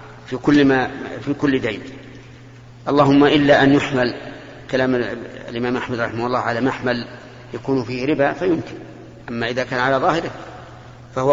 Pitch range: 120-135 Hz